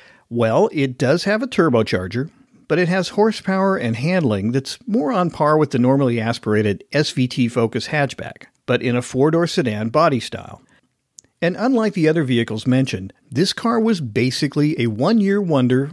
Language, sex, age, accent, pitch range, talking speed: English, male, 50-69, American, 120-175 Hz, 160 wpm